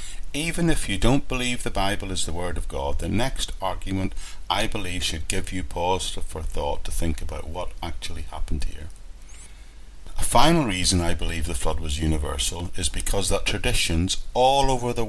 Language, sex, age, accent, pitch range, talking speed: English, male, 50-69, British, 80-105 Hz, 185 wpm